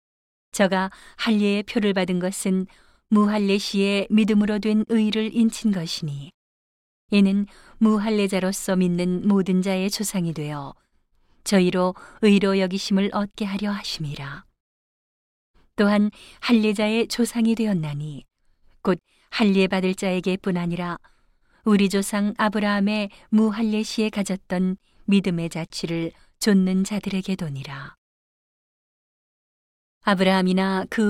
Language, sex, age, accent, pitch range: Korean, female, 40-59, native, 180-210 Hz